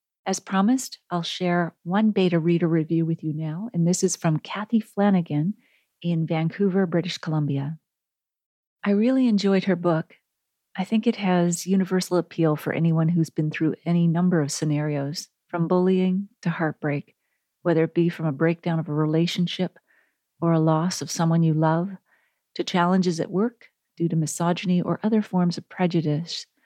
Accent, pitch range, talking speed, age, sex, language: American, 165-185 Hz, 165 wpm, 40-59, female, English